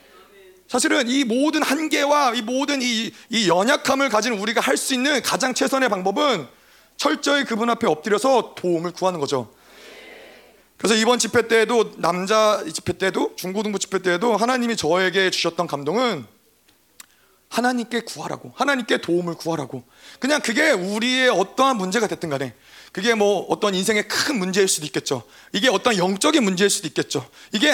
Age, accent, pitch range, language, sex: 30-49, native, 185-260 Hz, Korean, male